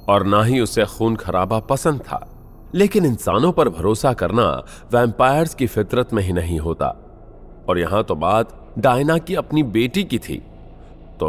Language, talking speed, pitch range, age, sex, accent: Hindi, 165 wpm, 85-125 Hz, 30-49, male, native